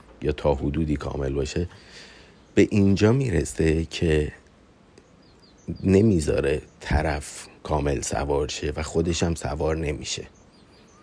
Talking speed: 100 wpm